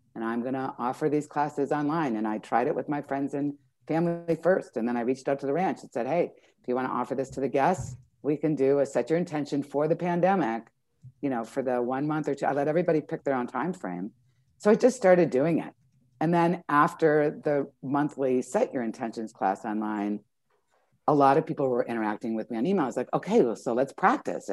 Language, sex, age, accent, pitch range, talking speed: English, female, 50-69, American, 115-160 Hz, 235 wpm